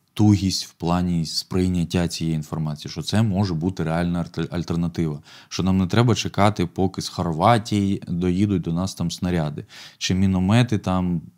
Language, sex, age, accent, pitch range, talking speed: Ukrainian, male, 20-39, native, 85-105 Hz, 150 wpm